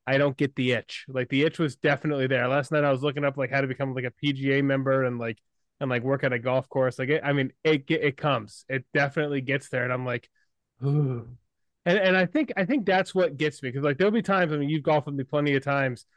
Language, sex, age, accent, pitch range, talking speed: English, male, 20-39, American, 135-165 Hz, 275 wpm